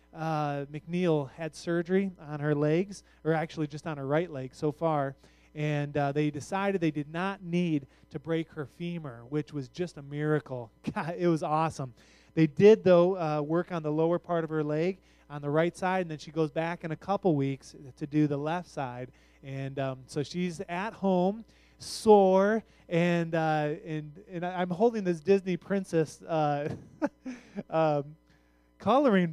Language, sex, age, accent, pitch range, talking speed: English, male, 20-39, American, 150-195 Hz, 175 wpm